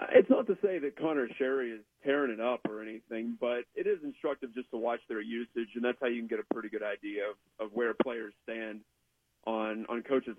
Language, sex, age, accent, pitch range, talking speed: English, male, 40-59, American, 115-145 Hz, 230 wpm